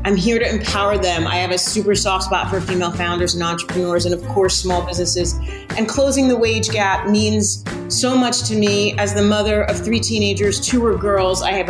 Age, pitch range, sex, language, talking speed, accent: 30-49, 185-230 Hz, female, English, 215 wpm, American